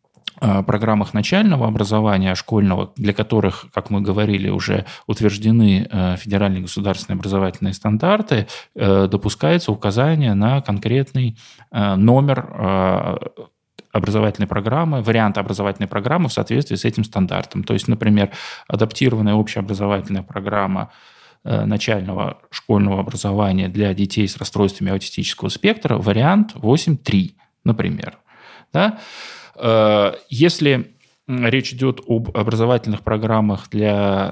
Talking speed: 100 wpm